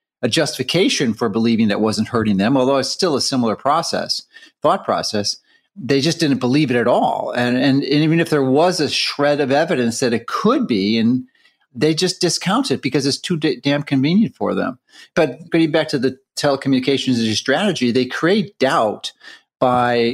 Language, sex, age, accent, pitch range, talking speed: English, male, 40-59, American, 115-145 Hz, 185 wpm